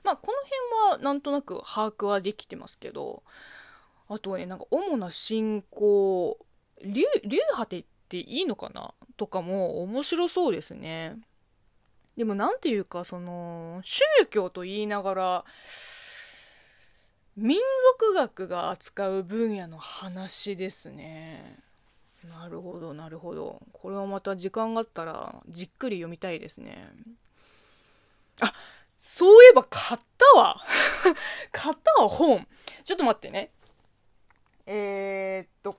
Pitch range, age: 190-310 Hz, 20-39